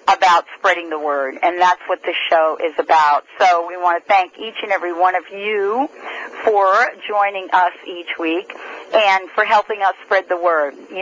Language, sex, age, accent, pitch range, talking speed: English, female, 50-69, American, 175-215 Hz, 190 wpm